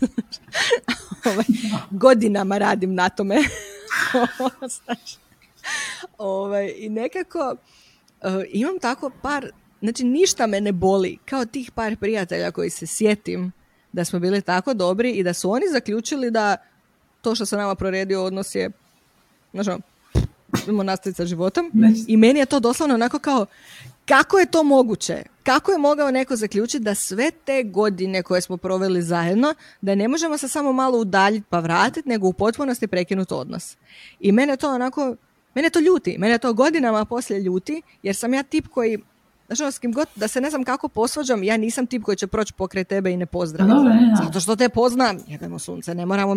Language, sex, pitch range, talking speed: Croatian, female, 195-260 Hz, 165 wpm